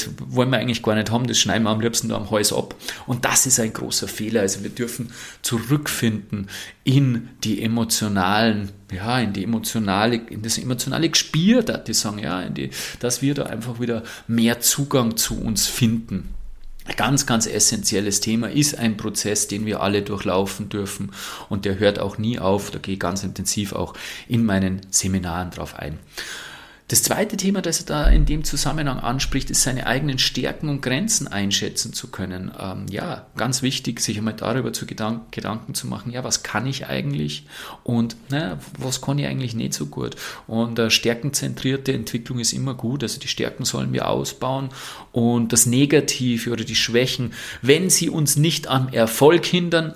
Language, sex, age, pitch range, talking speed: German, male, 30-49, 105-130 Hz, 175 wpm